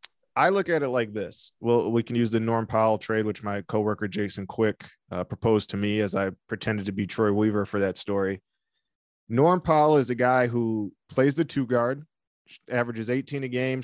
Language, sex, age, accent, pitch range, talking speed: English, male, 20-39, American, 105-130 Hz, 205 wpm